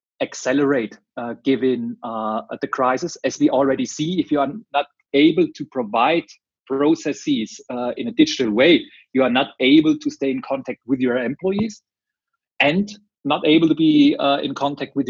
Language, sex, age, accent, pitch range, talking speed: English, male, 30-49, German, 135-195 Hz, 170 wpm